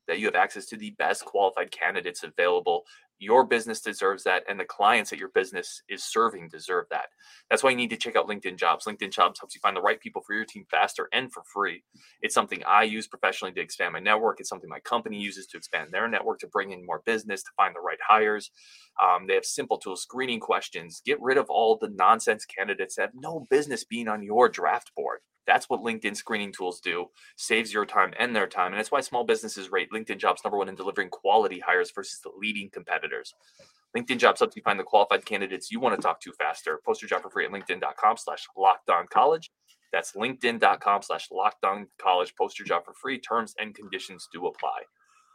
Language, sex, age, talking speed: English, male, 20-39, 220 wpm